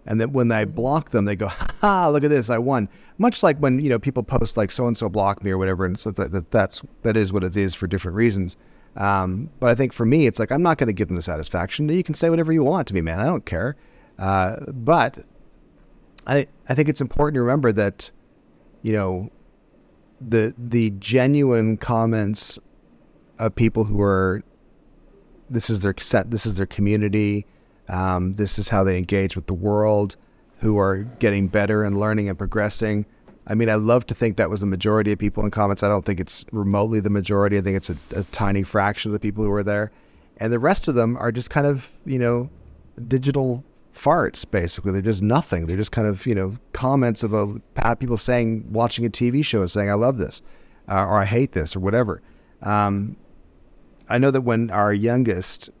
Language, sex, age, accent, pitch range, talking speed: English, male, 30-49, American, 100-120 Hz, 210 wpm